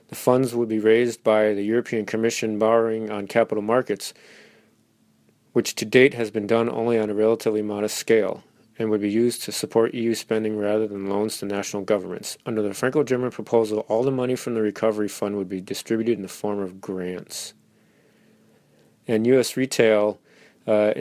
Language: English